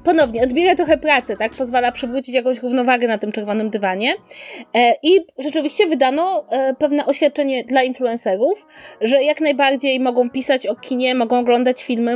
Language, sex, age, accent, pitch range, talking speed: Polish, female, 20-39, native, 220-275 Hz, 160 wpm